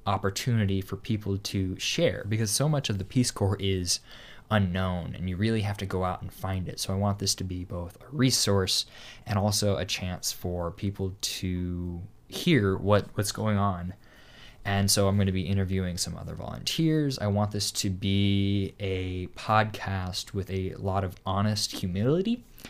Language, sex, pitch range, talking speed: English, male, 95-110 Hz, 180 wpm